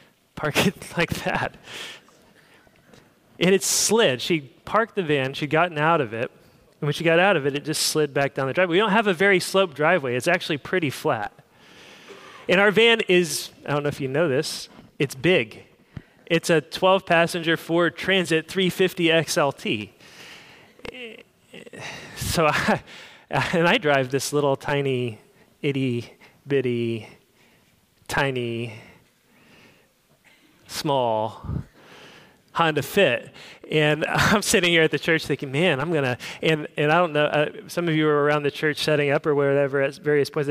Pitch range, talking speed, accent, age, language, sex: 145-180 Hz, 150 wpm, American, 30-49, English, male